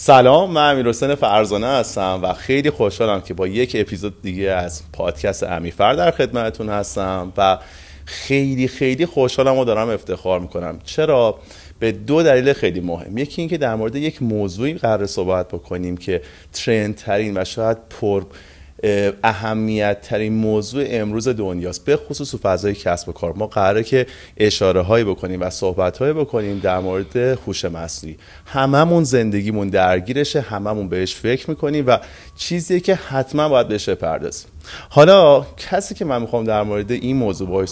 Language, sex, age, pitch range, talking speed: Persian, male, 30-49, 95-130 Hz, 155 wpm